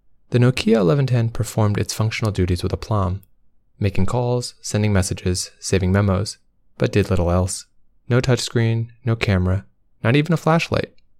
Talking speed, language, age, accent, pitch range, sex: 145 wpm, English, 20-39, American, 95-120 Hz, male